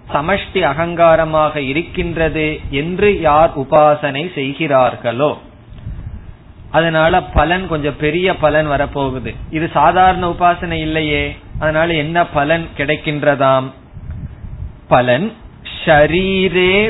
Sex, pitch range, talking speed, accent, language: male, 145-180 Hz, 80 wpm, native, Tamil